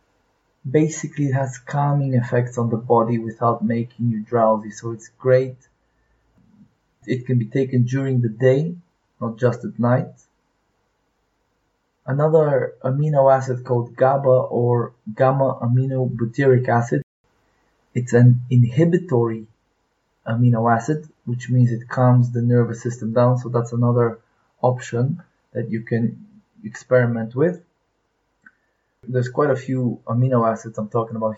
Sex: male